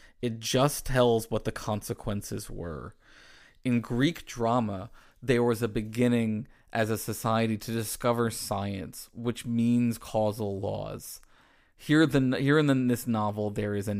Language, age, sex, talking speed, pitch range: English, 20-39, male, 145 wpm, 105-130 Hz